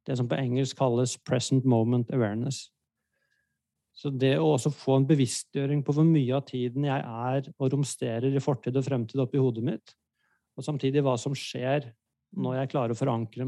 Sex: male